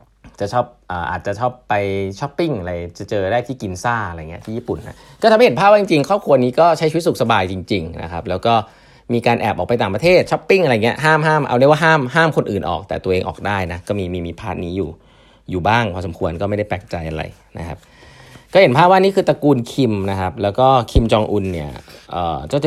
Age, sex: 20-39, male